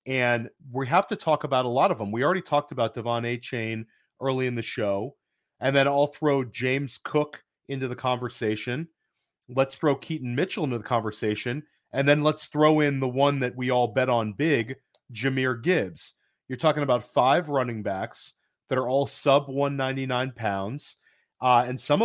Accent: American